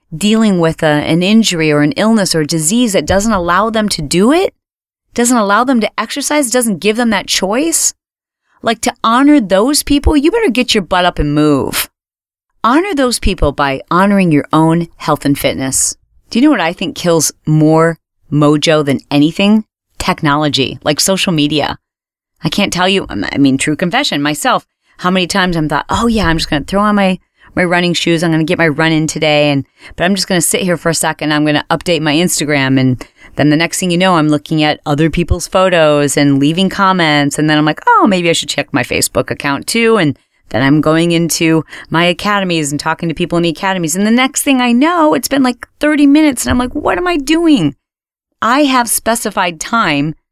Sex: female